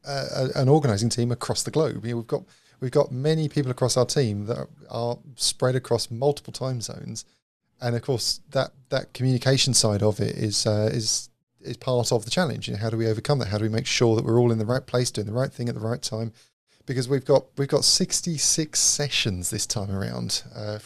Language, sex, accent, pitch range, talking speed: English, male, British, 115-140 Hz, 225 wpm